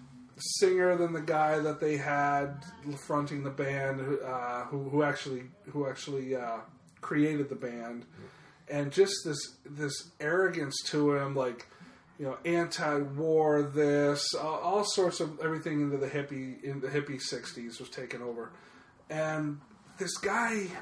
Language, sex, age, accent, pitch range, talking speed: English, male, 30-49, American, 145-180 Hz, 145 wpm